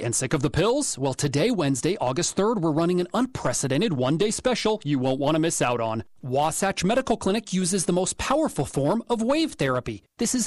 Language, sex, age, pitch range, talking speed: English, male, 30-49, 140-225 Hz, 205 wpm